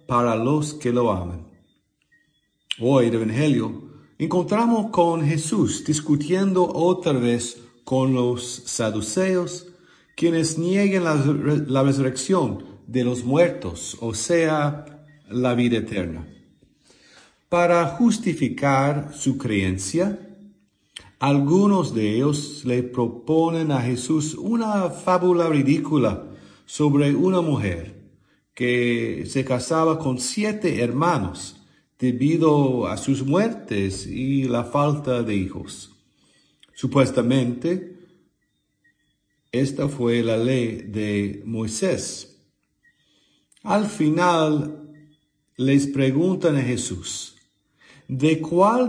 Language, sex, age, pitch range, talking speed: English, male, 50-69, 120-165 Hz, 95 wpm